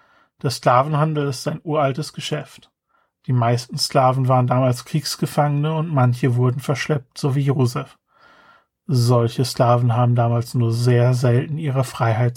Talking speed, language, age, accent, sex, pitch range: 135 wpm, German, 40-59, German, male, 125-150 Hz